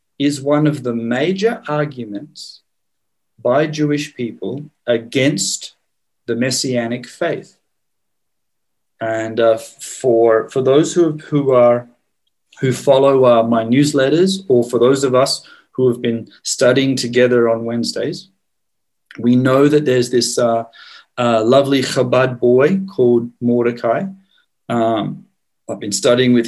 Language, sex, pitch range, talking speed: English, male, 120-150 Hz, 125 wpm